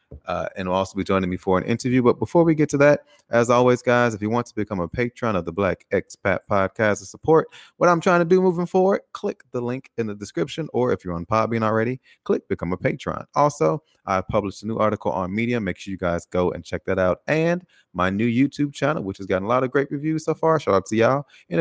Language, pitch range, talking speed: English, 95-135 Hz, 260 wpm